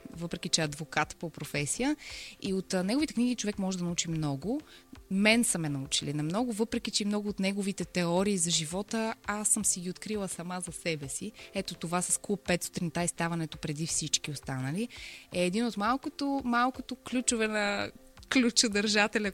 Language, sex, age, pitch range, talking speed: Bulgarian, female, 20-39, 165-220 Hz, 175 wpm